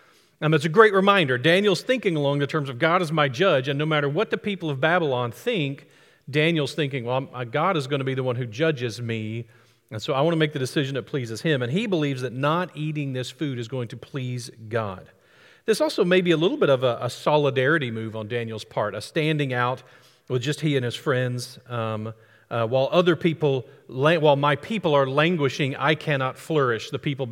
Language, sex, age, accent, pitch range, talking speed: English, male, 40-59, American, 125-155 Hz, 220 wpm